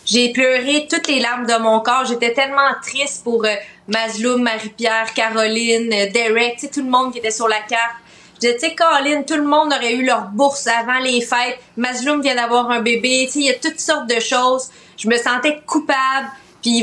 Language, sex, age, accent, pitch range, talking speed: French, female, 30-49, Canadian, 225-265 Hz, 205 wpm